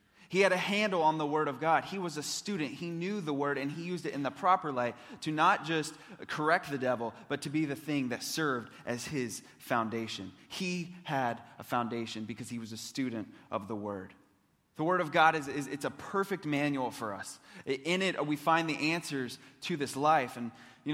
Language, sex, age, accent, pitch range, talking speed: English, male, 20-39, American, 130-160 Hz, 220 wpm